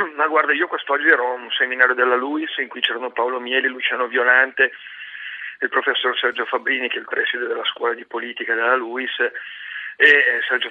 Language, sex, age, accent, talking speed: Italian, male, 40-59, native, 185 wpm